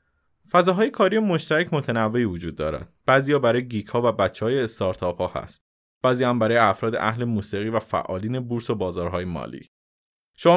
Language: Persian